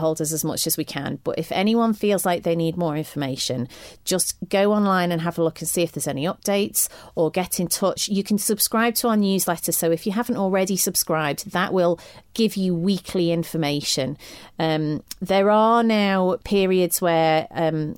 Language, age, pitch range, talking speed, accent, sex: English, 30-49, 160-195 Hz, 195 wpm, British, female